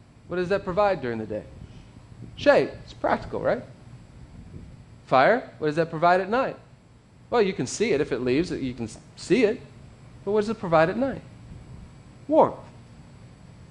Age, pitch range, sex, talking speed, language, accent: 40-59, 125-190 Hz, male, 165 wpm, English, American